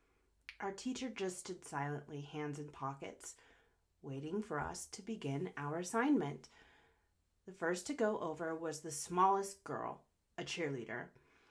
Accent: American